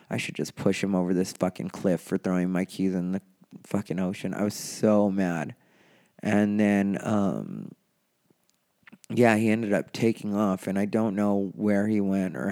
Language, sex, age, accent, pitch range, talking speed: English, male, 20-39, American, 95-115 Hz, 180 wpm